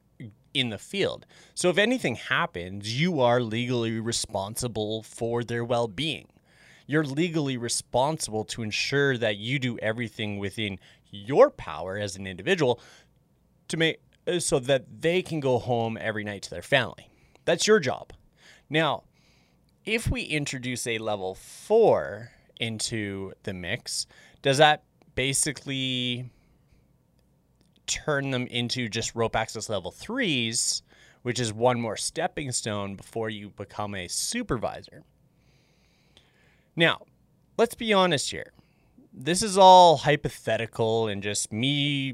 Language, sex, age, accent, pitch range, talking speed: English, male, 30-49, American, 110-145 Hz, 125 wpm